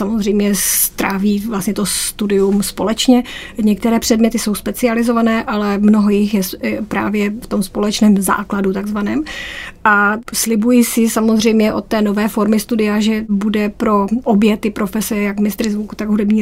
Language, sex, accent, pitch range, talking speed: Czech, female, native, 200-220 Hz, 145 wpm